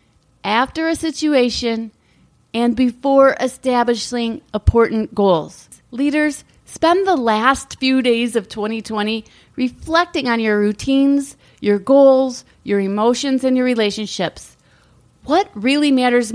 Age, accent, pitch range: 30-49, American, 215-285 Hz